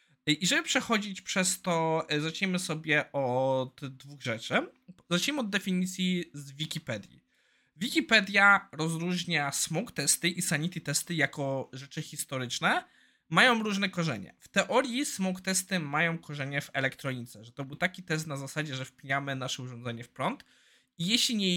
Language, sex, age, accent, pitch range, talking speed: Polish, male, 20-39, native, 140-185 Hz, 140 wpm